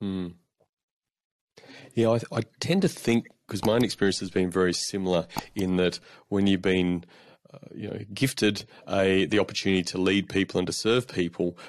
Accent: Australian